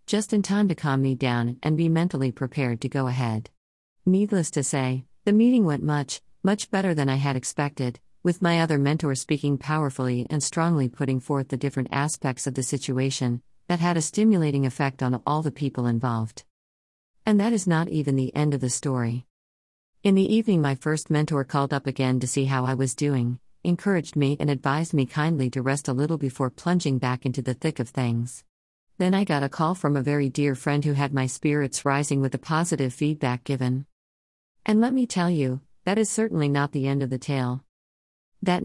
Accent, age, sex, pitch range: American, 50-69, female, 130-160 Hz